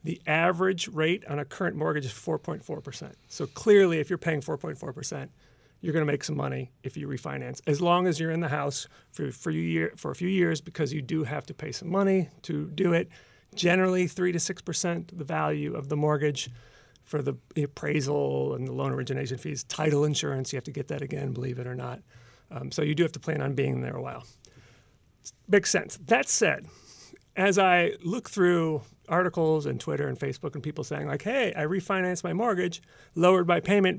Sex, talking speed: male, 200 wpm